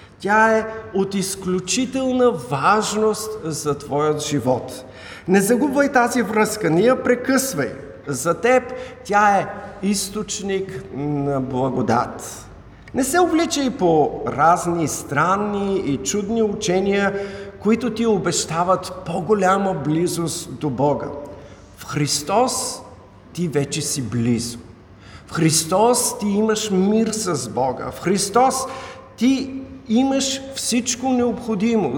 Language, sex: Bulgarian, male